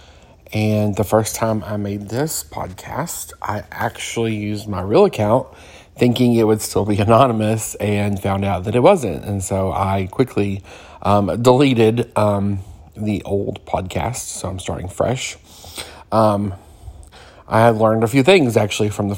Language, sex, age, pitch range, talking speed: English, male, 40-59, 100-115 Hz, 155 wpm